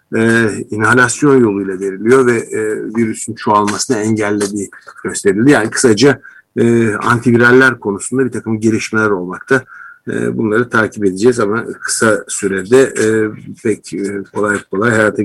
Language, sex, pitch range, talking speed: Turkish, male, 105-120 Hz, 120 wpm